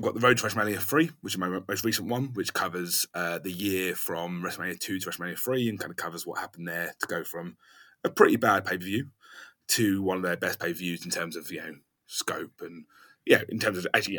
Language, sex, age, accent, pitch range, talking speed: English, male, 30-49, British, 95-115 Hz, 235 wpm